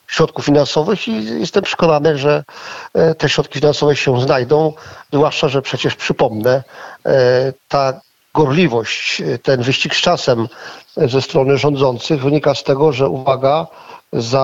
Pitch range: 135-155 Hz